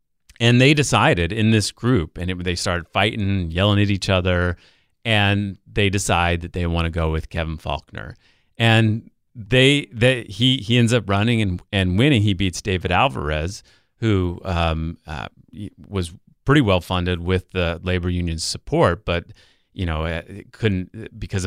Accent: American